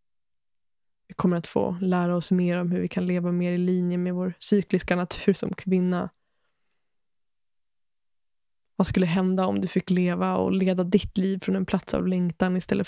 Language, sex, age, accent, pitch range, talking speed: Swedish, female, 20-39, native, 170-190 Hz, 175 wpm